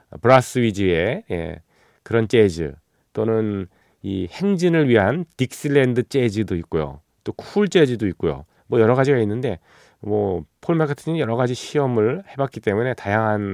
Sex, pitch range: male, 90-130 Hz